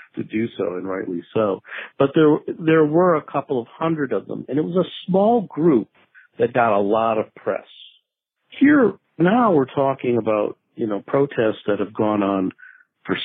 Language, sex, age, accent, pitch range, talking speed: English, male, 50-69, American, 105-150 Hz, 185 wpm